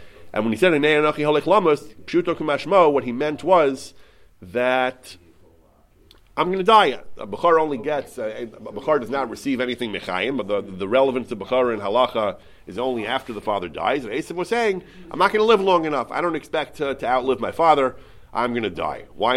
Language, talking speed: English, 195 wpm